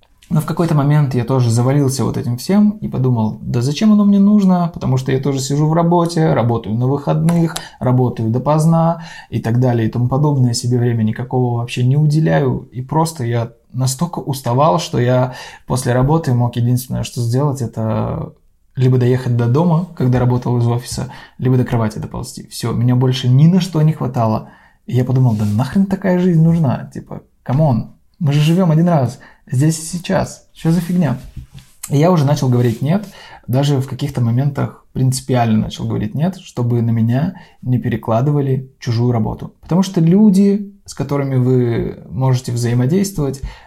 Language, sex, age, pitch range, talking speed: Russian, male, 20-39, 120-160 Hz, 170 wpm